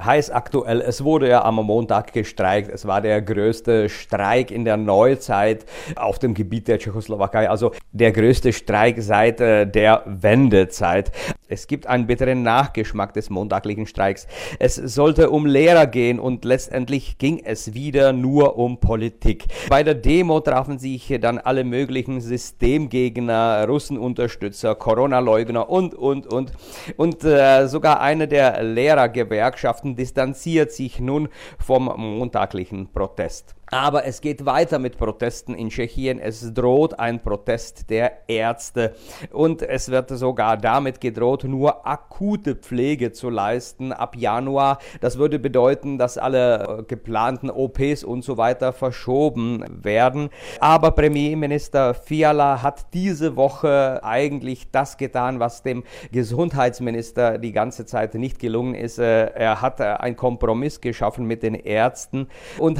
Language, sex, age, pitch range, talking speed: German, male, 50-69, 115-140 Hz, 135 wpm